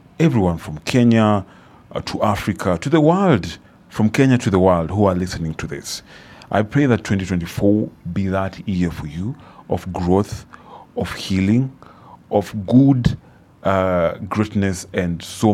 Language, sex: English, male